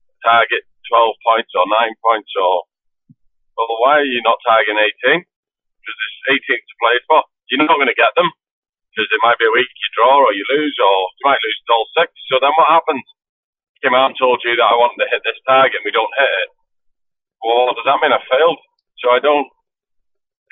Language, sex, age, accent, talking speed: English, male, 30-49, British, 220 wpm